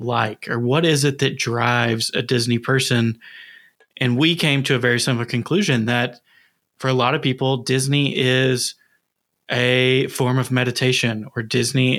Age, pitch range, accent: 20-39, 120-135 Hz, American